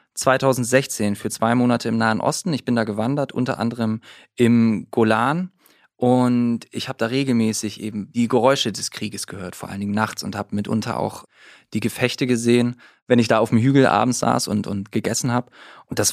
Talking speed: 190 wpm